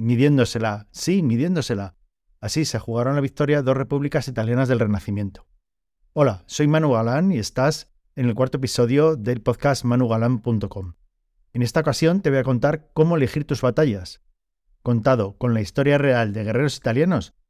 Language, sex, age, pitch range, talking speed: Spanish, male, 40-59, 115-145 Hz, 155 wpm